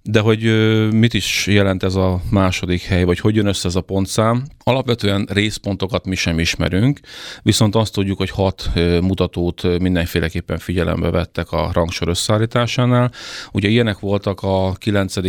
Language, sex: Hungarian, male